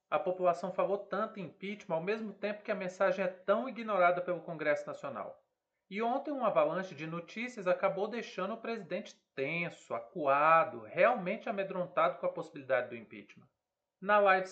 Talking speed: 160 wpm